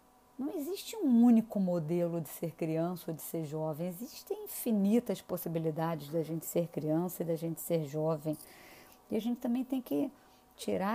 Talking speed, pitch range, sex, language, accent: 170 wpm, 170-220 Hz, female, Portuguese, Brazilian